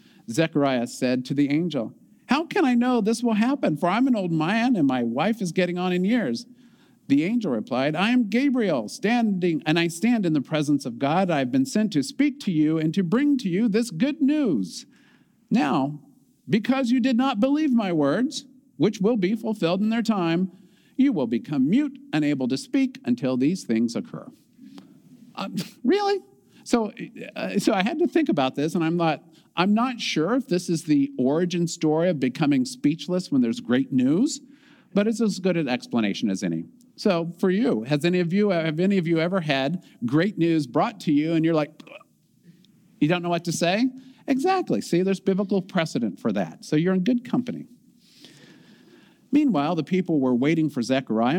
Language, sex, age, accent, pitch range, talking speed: English, male, 50-69, American, 155-250 Hz, 195 wpm